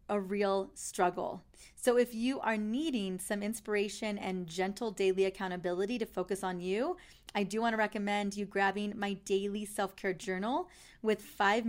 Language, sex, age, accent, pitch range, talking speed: English, female, 30-49, American, 195-230 Hz, 160 wpm